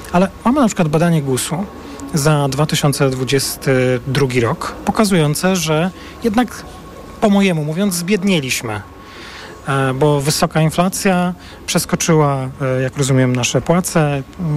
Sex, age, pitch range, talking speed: male, 40-59, 135-170 Hz, 100 wpm